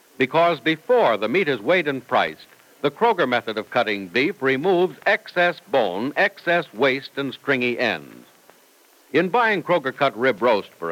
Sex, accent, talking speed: male, American, 160 wpm